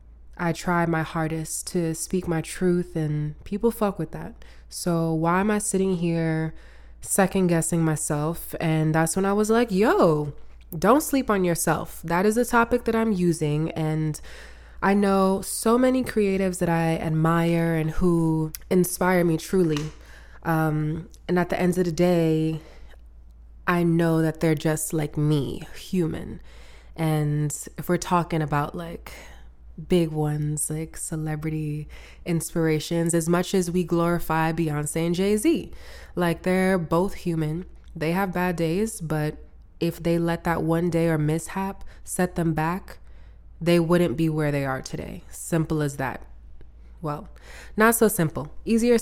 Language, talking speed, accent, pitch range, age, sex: English, 150 wpm, American, 155-180 Hz, 20-39, female